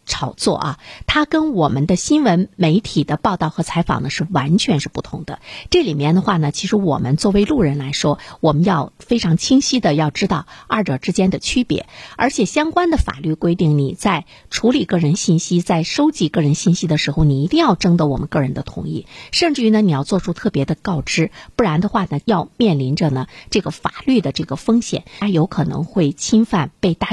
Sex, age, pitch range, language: female, 50-69, 150-210 Hz, Chinese